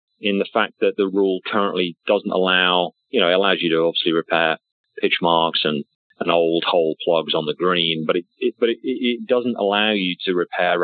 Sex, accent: male, British